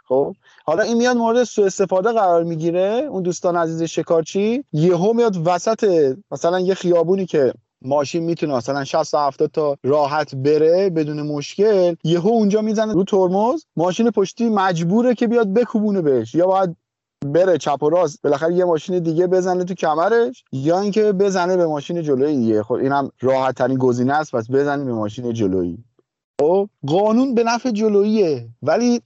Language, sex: Persian, male